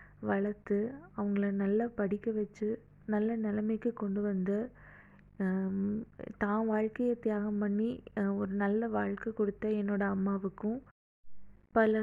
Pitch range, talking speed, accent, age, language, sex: 205-225 Hz, 100 wpm, native, 20-39, Tamil, female